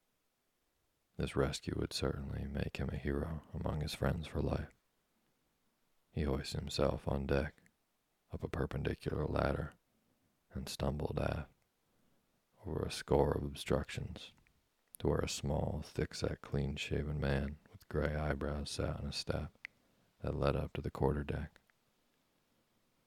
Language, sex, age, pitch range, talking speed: English, male, 40-59, 70-75 Hz, 130 wpm